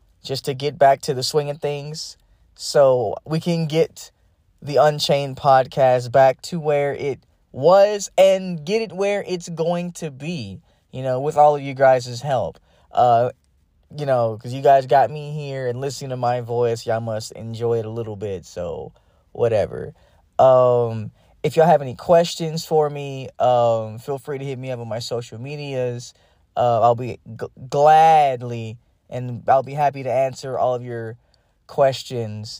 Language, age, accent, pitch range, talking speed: English, 20-39, American, 120-160 Hz, 170 wpm